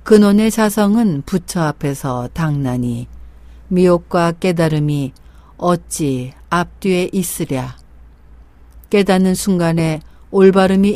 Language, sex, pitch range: Korean, female, 125-195 Hz